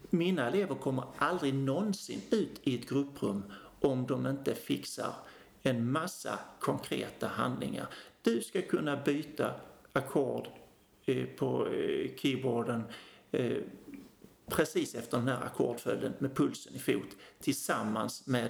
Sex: male